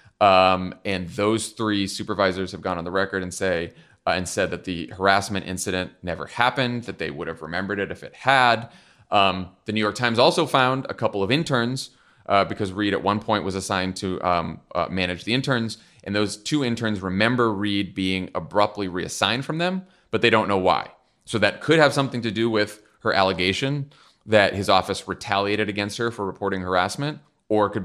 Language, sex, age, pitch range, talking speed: English, male, 30-49, 90-110 Hz, 200 wpm